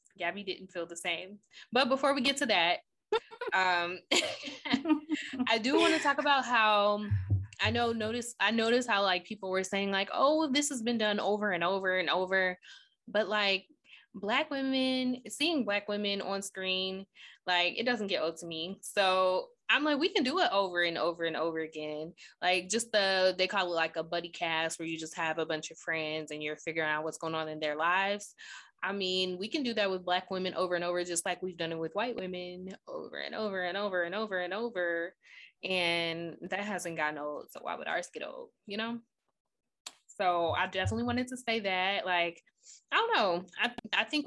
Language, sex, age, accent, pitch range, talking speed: English, female, 10-29, American, 170-235 Hz, 205 wpm